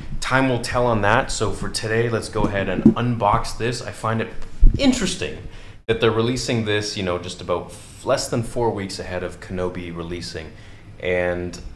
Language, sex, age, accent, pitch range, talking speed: English, male, 30-49, American, 90-115 Hz, 180 wpm